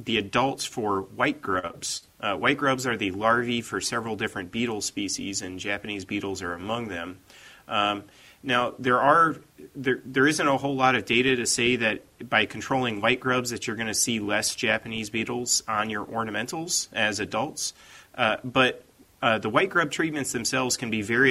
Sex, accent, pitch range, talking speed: male, American, 110-130 Hz, 180 wpm